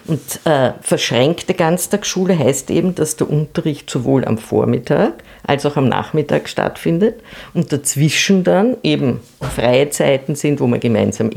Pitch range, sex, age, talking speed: 130-175 Hz, female, 50-69, 145 wpm